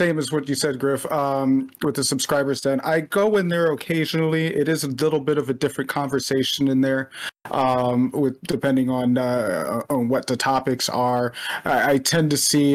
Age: 30-49